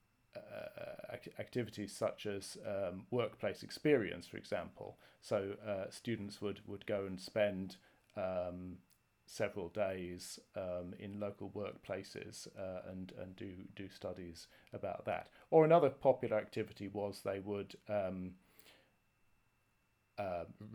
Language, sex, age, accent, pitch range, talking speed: English, male, 40-59, British, 100-125 Hz, 115 wpm